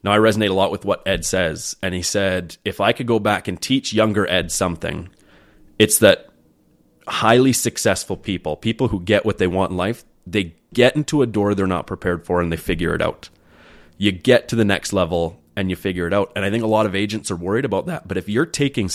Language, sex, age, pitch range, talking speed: English, male, 30-49, 90-110 Hz, 240 wpm